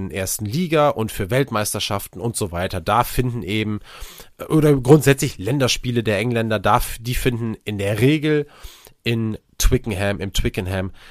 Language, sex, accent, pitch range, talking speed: German, male, German, 105-140 Hz, 135 wpm